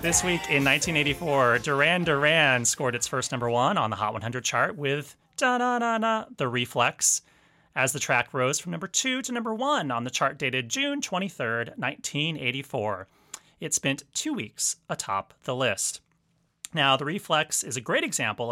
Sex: male